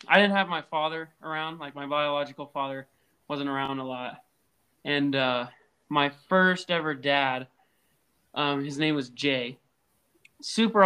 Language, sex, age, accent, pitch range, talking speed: English, male, 20-39, American, 135-155 Hz, 145 wpm